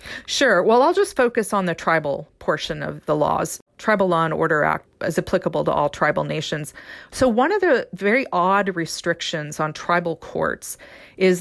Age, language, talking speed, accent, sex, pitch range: 40-59, English, 180 wpm, American, female, 165-200 Hz